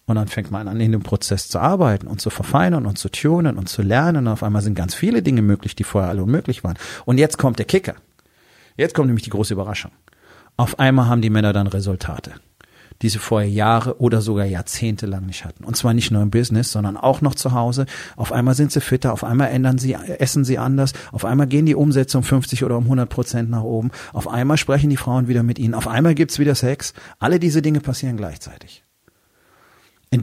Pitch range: 100-130 Hz